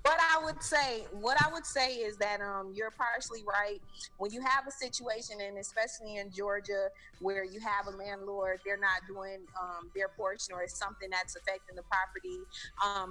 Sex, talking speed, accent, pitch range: female, 190 wpm, American, 185-220 Hz